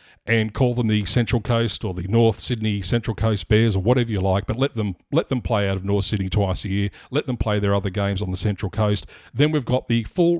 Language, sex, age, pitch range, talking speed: English, male, 40-59, 105-135 Hz, 255 wpm